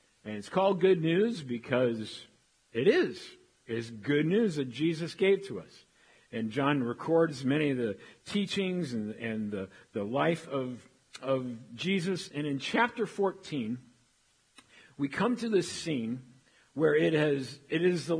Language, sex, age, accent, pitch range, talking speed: English, male, 50-69, American, 125-175 Hz, 150 wpm